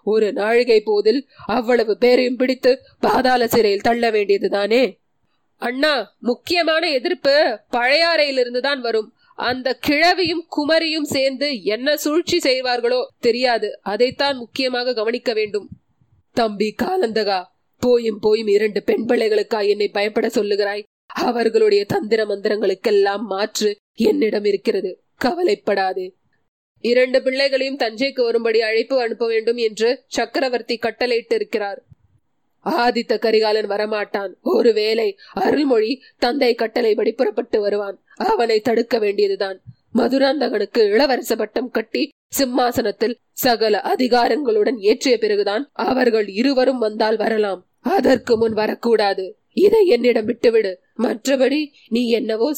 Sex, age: female, 20-39